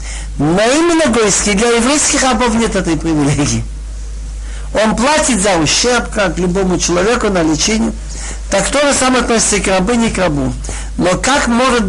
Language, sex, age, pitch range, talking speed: Russian, male, 60-79, 150-235 Hz, 155 wpm